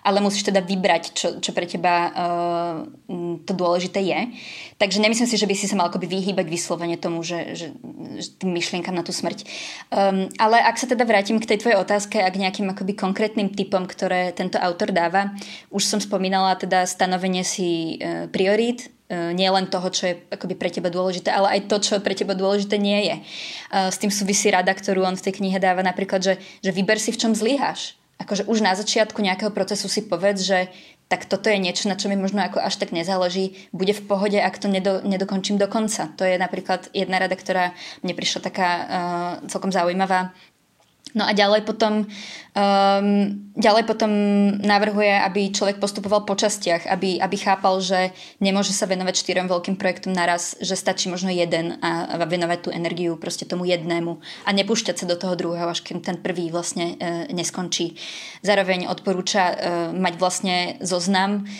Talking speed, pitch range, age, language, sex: 185 wpm, 180-205 Hz, 20-39, Czech, female